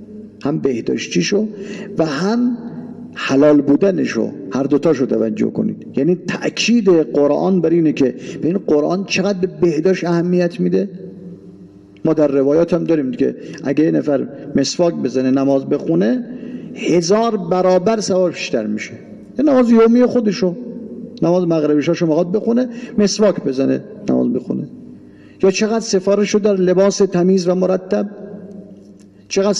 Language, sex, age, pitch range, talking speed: English, male, 50-69, 150-205 Hz, 125 wpm